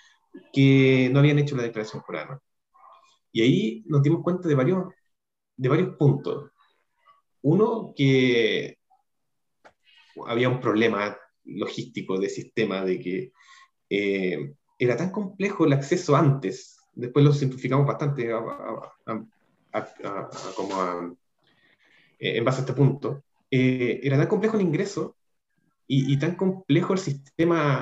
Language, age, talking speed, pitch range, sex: Spanish, 30-49, 140 wpm, 120-160 Hz, male